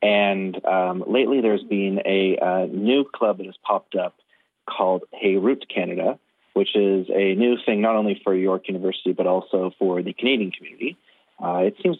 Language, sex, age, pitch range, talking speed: English, male, 30-49, 95-110 Hz, 180 wpm